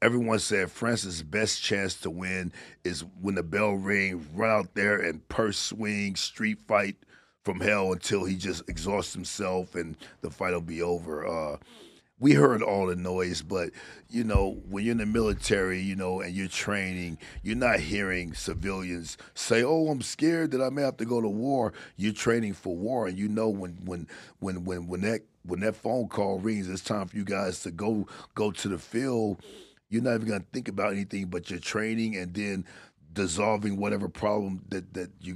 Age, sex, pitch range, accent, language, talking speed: 40-59, male, 90-110 Hz, American, English, 195 wpm